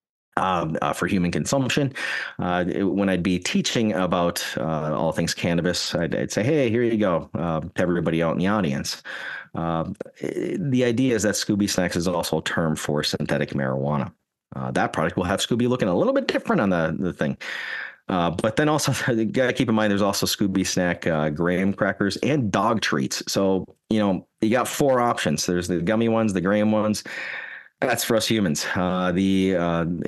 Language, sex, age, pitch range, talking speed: English, male, 30-49, 85-110 Hz, 195 wpm